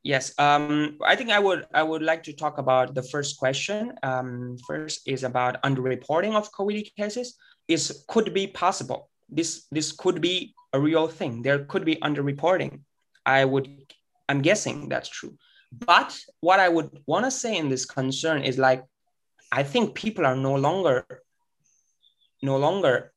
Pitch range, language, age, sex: 135-195 Hz, Chinese, 20-39, male